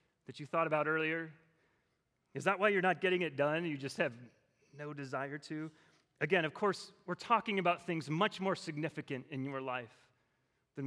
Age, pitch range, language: 30-49, 150-210 Hz, English